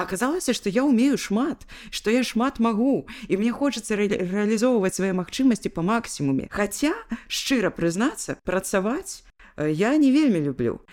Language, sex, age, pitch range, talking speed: Russian, female, 20-39, 185-240 Hz, 145 wpm